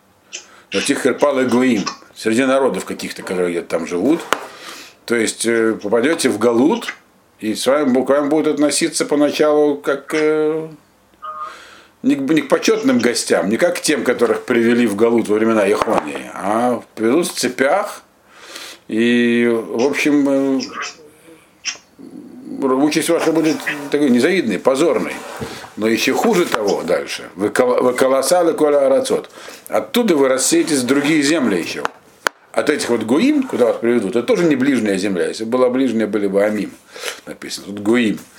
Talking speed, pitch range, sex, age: 140 wpm, 120-155 Hz, male, 50-69